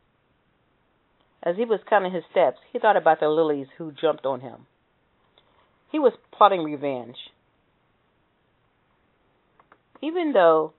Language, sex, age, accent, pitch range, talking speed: English, female, 40-59, American, 140-180 Hz, 115 wpm